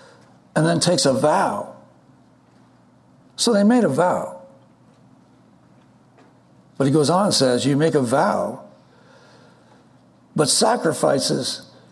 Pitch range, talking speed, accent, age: 135-190 Hz, 110 wpm, American, 60-79